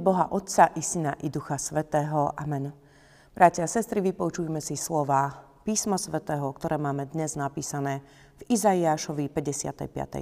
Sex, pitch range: female, 145-200 Hz